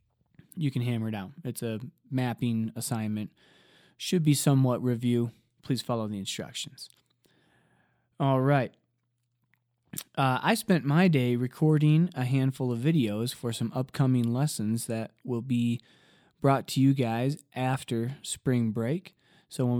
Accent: American